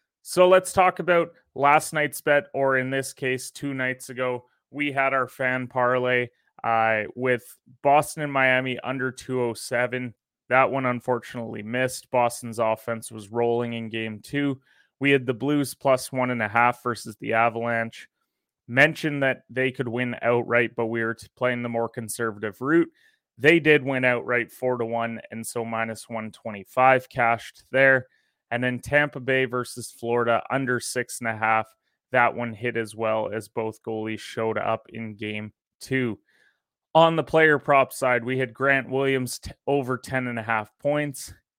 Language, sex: English, male